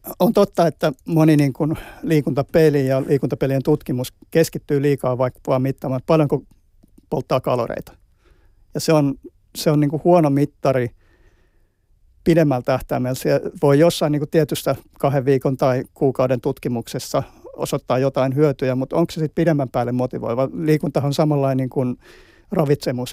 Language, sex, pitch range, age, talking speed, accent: Finnish, male, 125-150 Hz, 50-69, 145 wpm, native